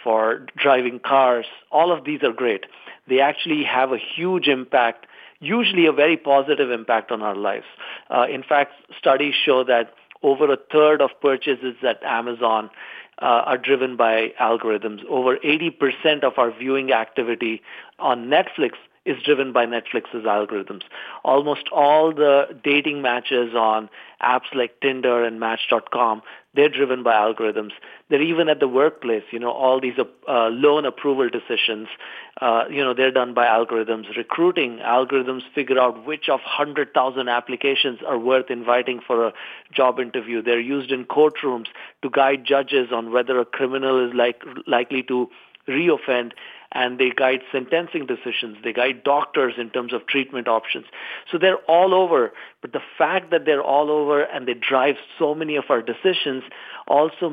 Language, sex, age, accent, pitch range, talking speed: English, male, 40-59, Indian, 120-150 Hz, 160 wpm